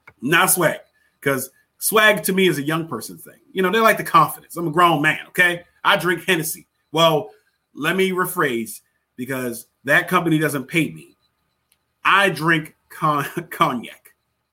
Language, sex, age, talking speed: English, male, 30-49, 160 wpm